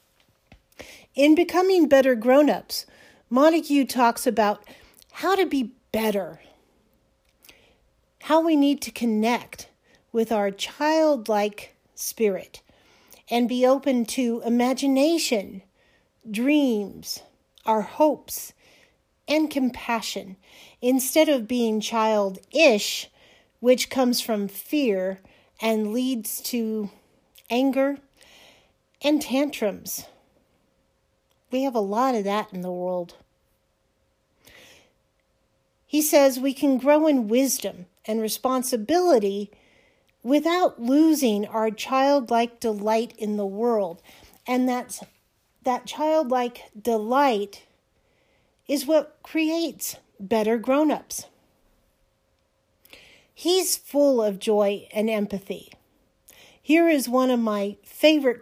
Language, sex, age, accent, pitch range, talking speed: English, female, 50-69, American, 215-280 Hz, 95 wpm